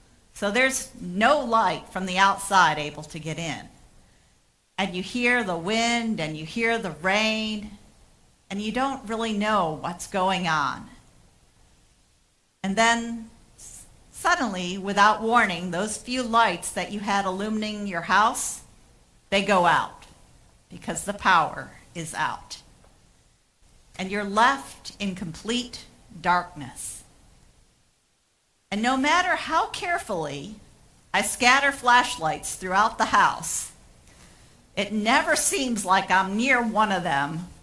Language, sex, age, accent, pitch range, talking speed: English, female, 50-69, American, 180-230 Hz, 125 wpm